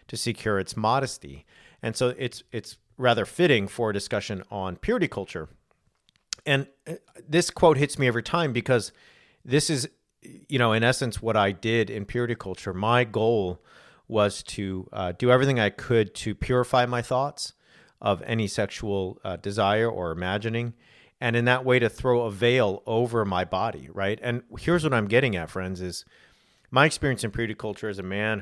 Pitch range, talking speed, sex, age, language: 95-120 Hz, 175 wpm, male, 40-59, English